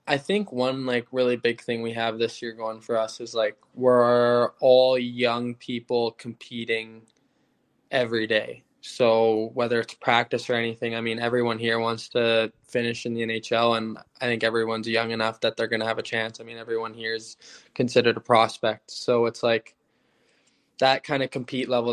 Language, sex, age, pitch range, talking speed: English, male, 10-29, 110-120 Hz, 185 wpm